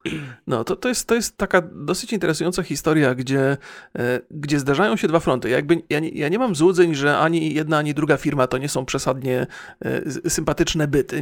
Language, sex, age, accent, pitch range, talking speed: Polish, male, 40-59, native, 140-175 Hz, 170 wpm